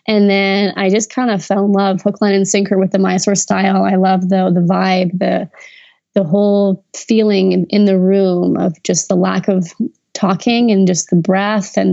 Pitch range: 185-205 Hz